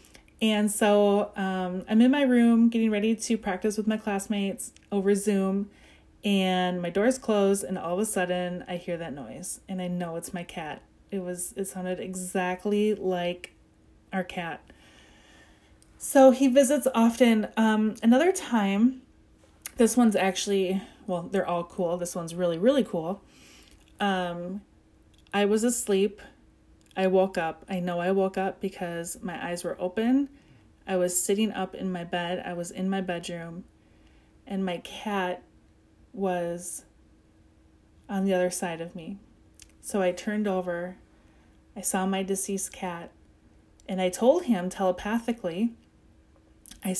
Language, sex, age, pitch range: English, female, 30-49, 175-210 Hz